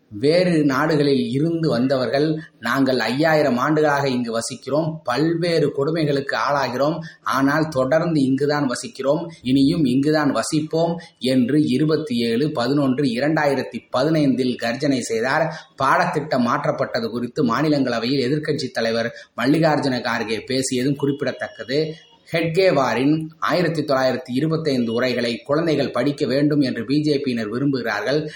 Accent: native